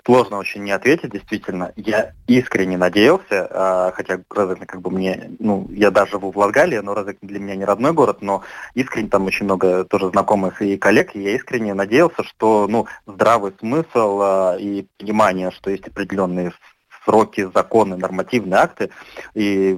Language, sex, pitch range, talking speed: Russian, male, 95-105 Hz, 160 wpm